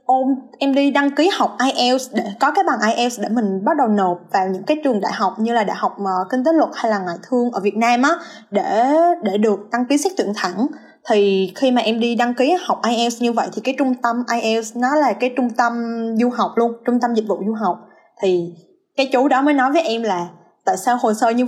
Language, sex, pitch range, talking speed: Vietnamese, female, 210-270 Hz, 255 wpm